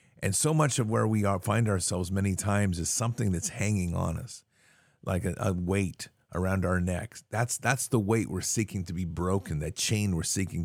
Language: English